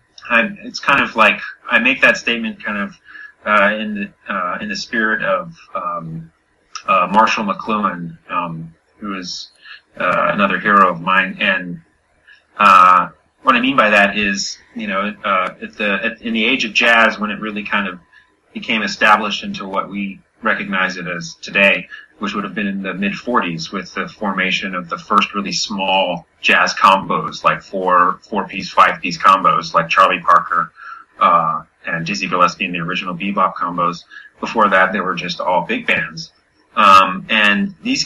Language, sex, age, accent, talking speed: English, male, 30-49, American, 170 wpm